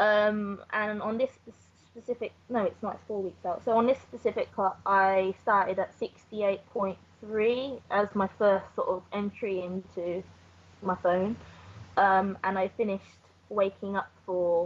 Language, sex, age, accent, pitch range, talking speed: English, female, 20-39, British, 180-215 Hz, 145 wpm